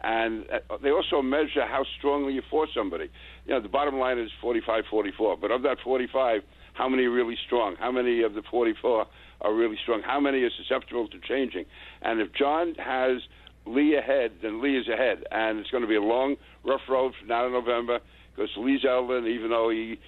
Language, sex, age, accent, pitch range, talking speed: English, male, 60-79, American, 115-145 Hz, 205 wpm